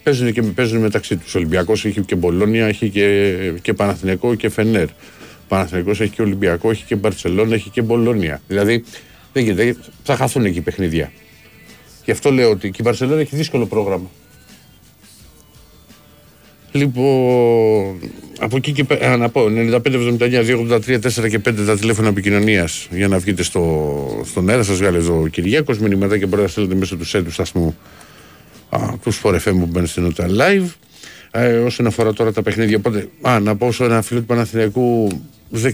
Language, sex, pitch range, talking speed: Greek, male, 90-115 Hz, 175 wpm